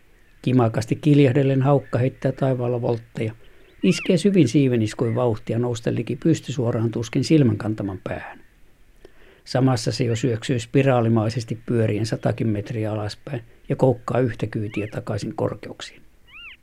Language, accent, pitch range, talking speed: Finnish, native, 115-140 Hz, 110 wpm